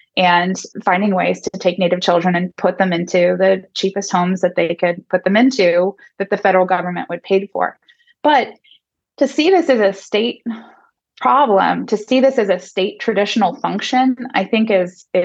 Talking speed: 180 wpm